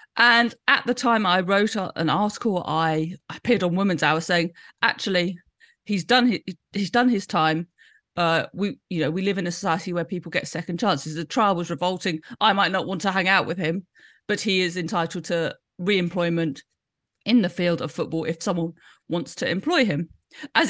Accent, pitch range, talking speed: British, 175-225 Hz, 195 wpm